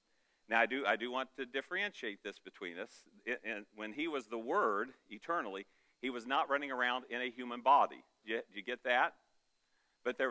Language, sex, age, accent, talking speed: English, male, 50-69, American, 205 wpm